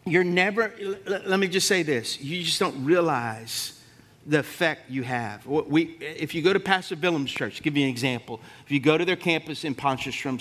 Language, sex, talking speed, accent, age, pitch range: English, male, 210 wpm, American, 50-69, 140-190 Hz